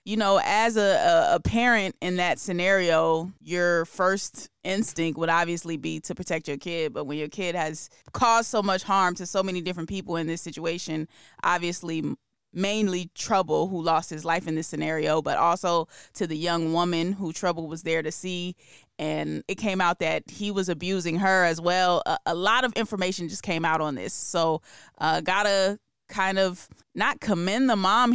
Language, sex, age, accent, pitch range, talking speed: English, female, 20-39, American, 165-195 Hz, 190 wpm